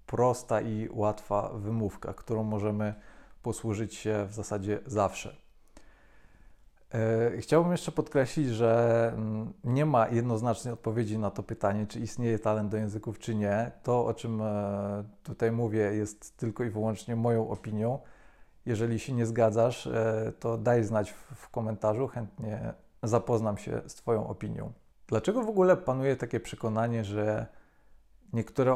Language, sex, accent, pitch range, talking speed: Polish, male, native, 110-125 Hz, 130 wpm